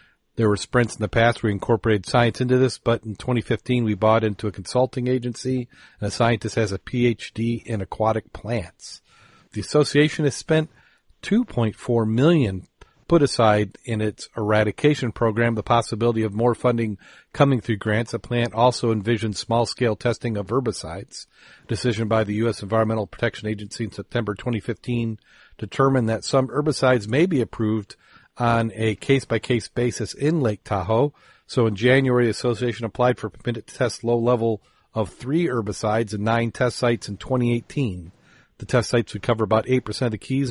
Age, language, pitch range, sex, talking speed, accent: 40-59, English, 110-125 Hz, male, 170 wpm, American